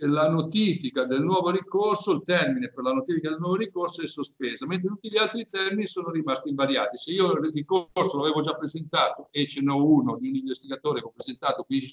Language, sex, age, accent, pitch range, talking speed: Italian, male, 60-79, native, 130-175 Hz, 205 wpm